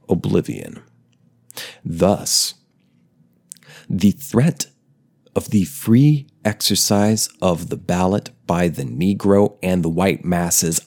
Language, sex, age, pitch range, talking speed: English, male, 30-49, 90-120 Hz, 100 wpm